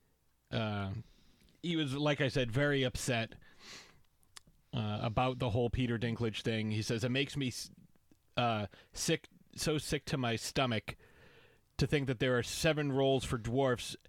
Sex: male